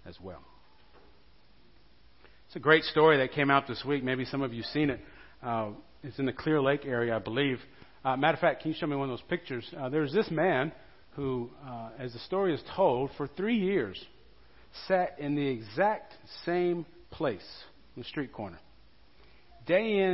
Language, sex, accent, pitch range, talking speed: English, male, American, 115-165 Hz, 195 wpm